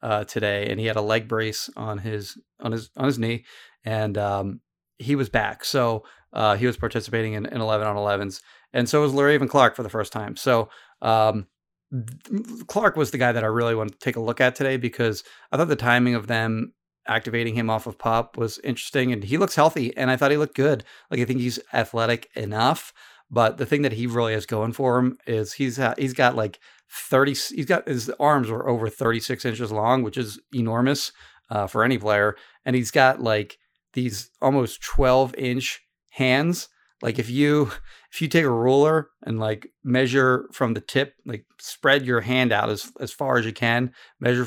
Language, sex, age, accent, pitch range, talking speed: English, male, 30-49, American, 110-135 Hz, 210 wpm